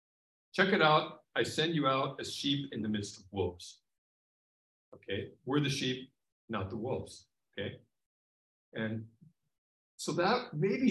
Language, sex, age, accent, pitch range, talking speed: English, male, 50-69, American, 95-130 Hz, 145 wpm